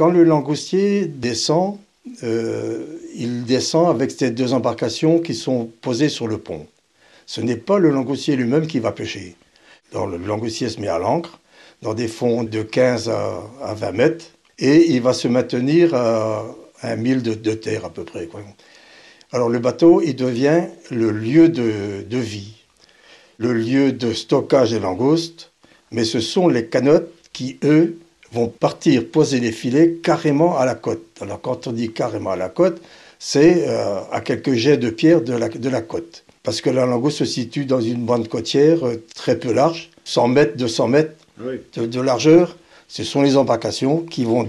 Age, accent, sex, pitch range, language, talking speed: 60-79, French, male, 115-150 Hz, French, 180 wpm